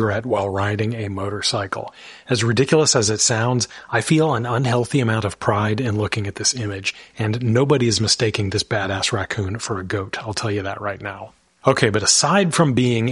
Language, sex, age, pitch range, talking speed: English, male, 40-59, 100-120 Hz, 190 wpm